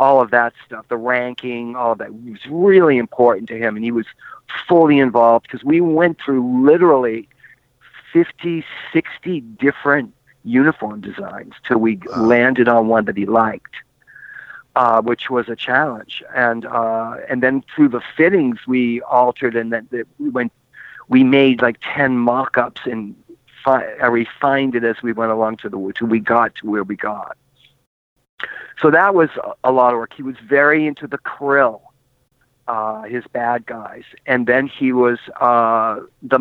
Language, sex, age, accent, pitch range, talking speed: English, male, 50-69, American, 115-145 Hz, 165 wpm